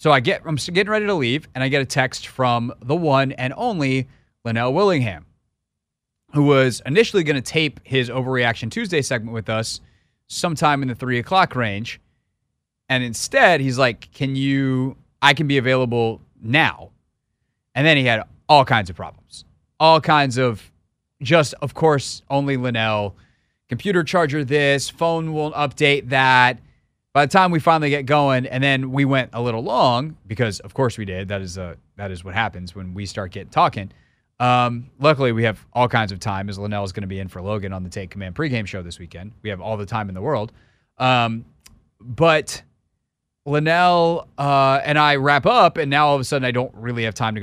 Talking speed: 195 wpm